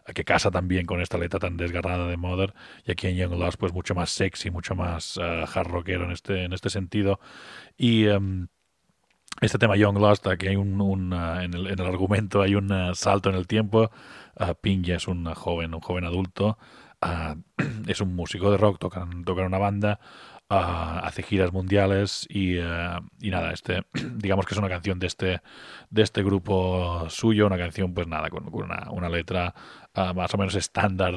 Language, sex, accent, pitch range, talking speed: Spanish, male, Spanish, 90-100 Hz, 200 wpm